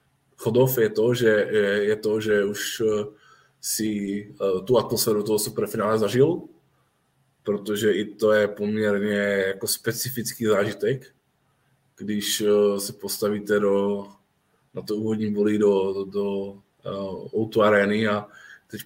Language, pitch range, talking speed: Czech, 100-115 Hz, 110 wpm